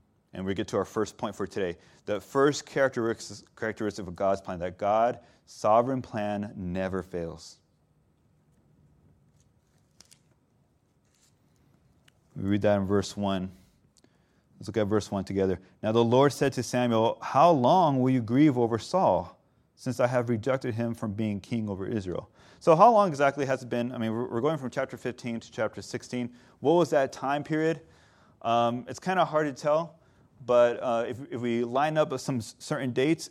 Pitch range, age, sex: 105-140 Hz, 30-49, male